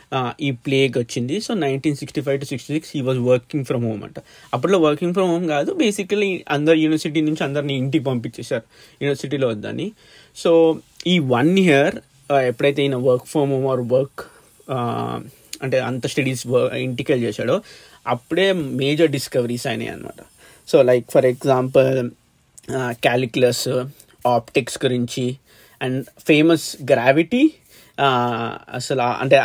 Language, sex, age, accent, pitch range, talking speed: Telugu, male, 30-49, native, 125-155 Hz, 130 wpm